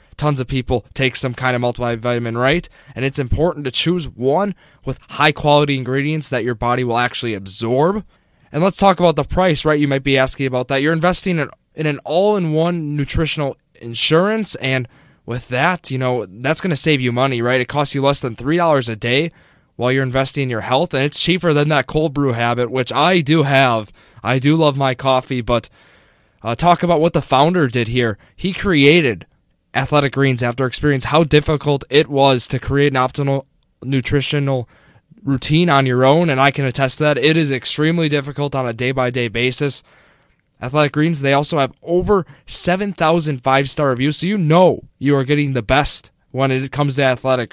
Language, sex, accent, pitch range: English, male, American, 130-155 Hz